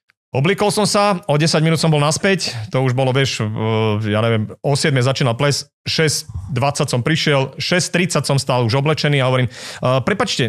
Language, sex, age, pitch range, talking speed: Slovak, male, 40-59, 135-175 Hz, 170 wpm